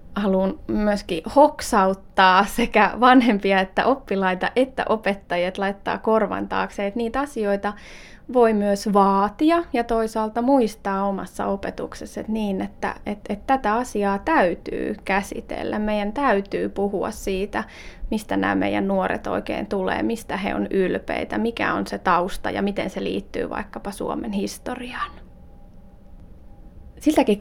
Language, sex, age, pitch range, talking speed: Finnish, female, 20-39, 195-245 Hz, 115 wpm